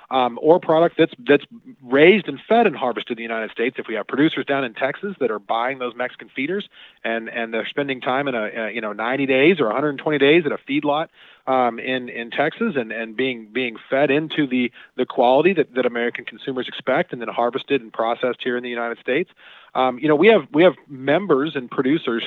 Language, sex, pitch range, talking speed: English, male, 120-150 Hz, 225 wpm